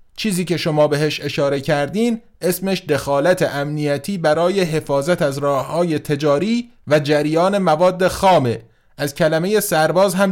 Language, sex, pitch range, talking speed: Persian, male, 130-175 Hz, 135 wpm